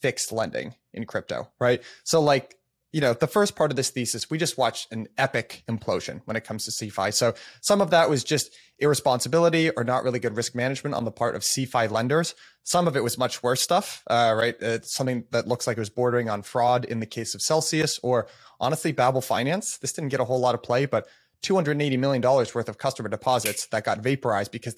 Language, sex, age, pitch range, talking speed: English, male, 30-49, 115-140 Hz, 220 wpm